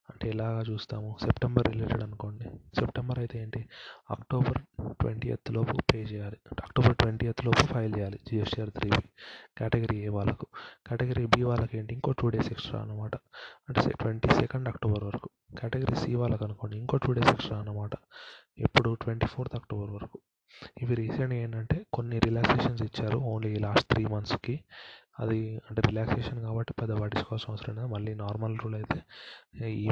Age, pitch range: 30-49, 110-120 Hz